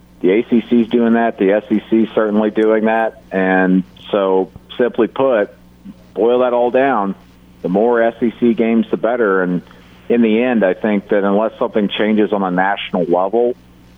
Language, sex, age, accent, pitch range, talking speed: English, male, 50-69, American, 95-115 Hz, 165 wpm